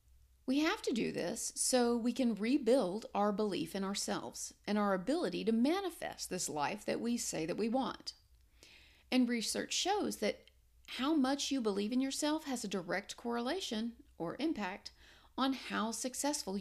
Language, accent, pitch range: English, American, 185-260 Hz